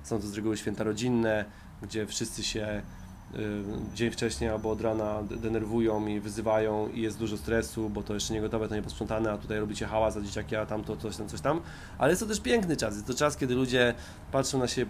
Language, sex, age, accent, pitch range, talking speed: Polish, male, 20-39, native, 105-120 Hz, 240 wpm